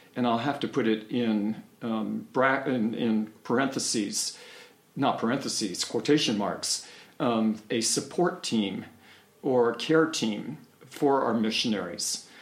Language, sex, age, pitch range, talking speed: English, male, 50-69, 110-130 Hz, 130 wpm